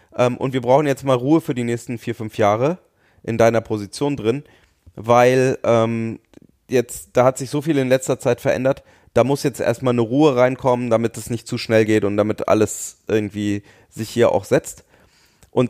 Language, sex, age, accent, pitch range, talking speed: German, male, 30-49, German, 115-135 Hz, 190 wpm